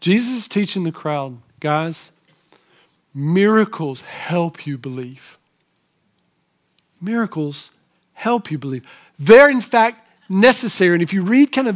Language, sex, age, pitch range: English, male, 50-69, 165-240 Hz